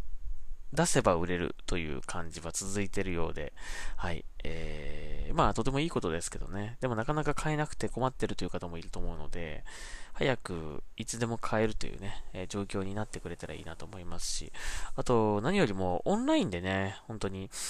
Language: Japanese